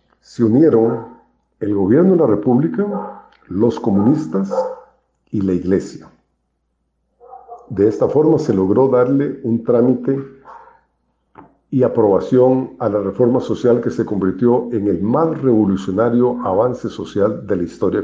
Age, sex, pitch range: 50-69, male, 110-135 Hz